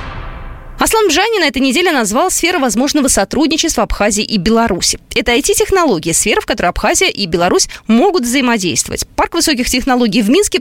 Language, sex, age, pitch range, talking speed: Russian, female, 20-39, 200-330 Hz, 160 wpm